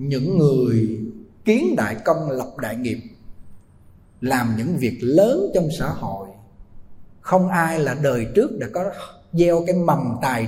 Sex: male